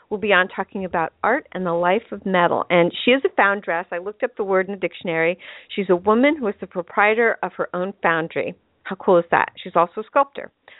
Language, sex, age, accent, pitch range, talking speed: English, female, 50-69, American, 180-225 Hz, 240 wpm